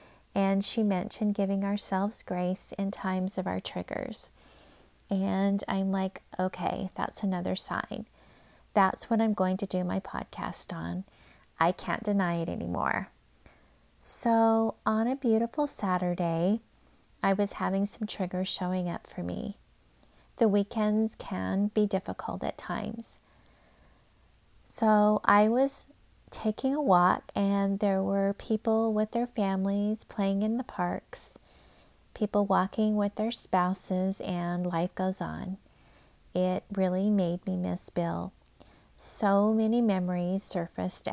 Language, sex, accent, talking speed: English, female, American, 130 wpm